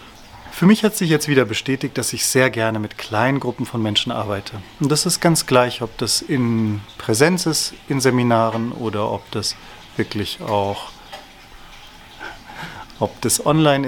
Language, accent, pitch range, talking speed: German, German, 115-145 Hz, 150 wpm